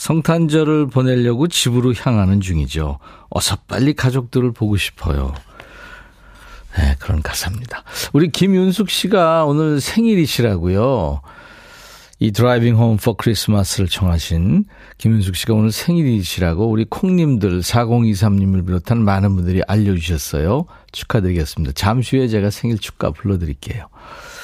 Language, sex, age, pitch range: Korean, male, 50-69, 95-150 Hz